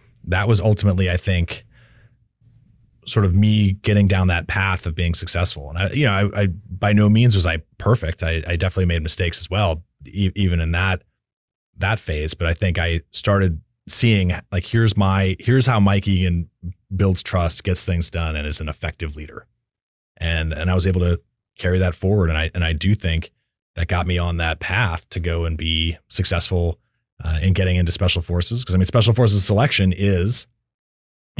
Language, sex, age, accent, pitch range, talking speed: English, male, 30-49, American, 85-105 Hz, 195 wpm